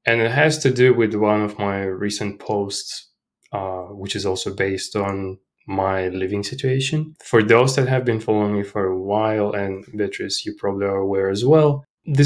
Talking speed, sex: 190 wpm, male